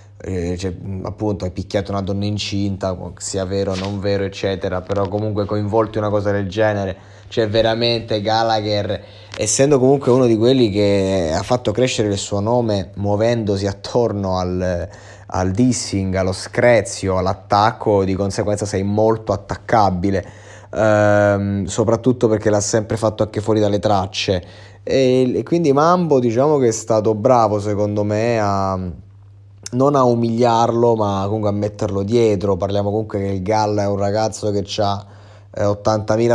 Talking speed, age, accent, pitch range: 145 wpm, 20-39, native, 100-110 Hz